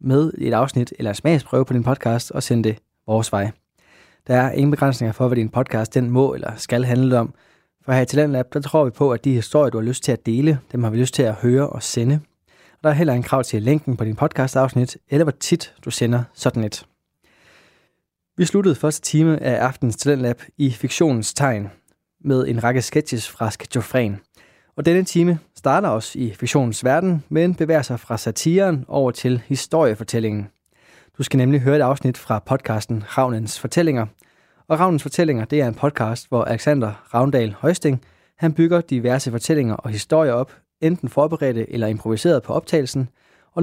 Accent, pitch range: native, 120-150 Hz